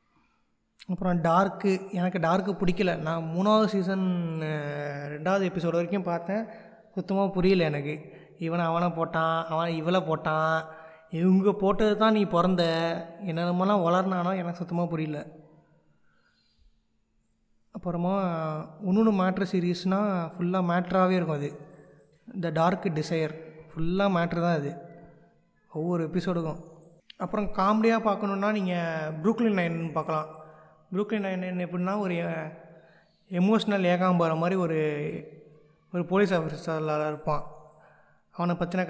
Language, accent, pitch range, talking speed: Tamil, native, 160-195 Hz, 110 wpm